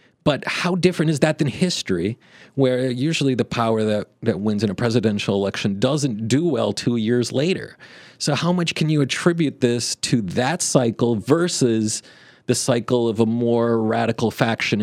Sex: male